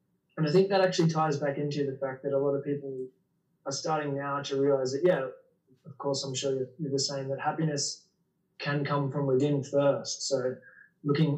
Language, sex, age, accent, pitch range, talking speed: English, male, 20-39, Australian, 135-160 Hz, 205 wpm